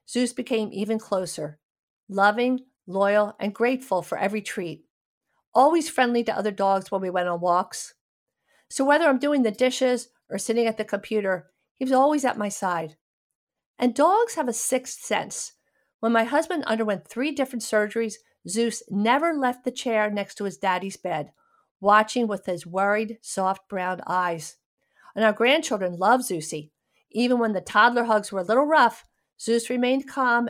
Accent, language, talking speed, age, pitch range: American, English, 165 wpm, 50-69, 195-250 Hz